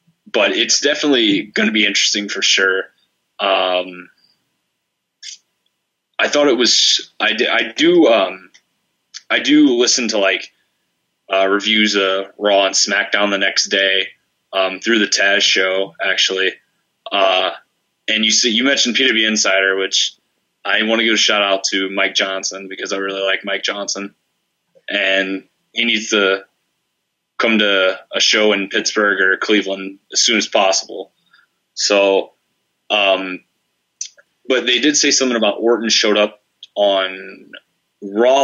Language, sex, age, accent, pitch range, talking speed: English, male, 20-39, American, 95-110 Hz, 145 wpm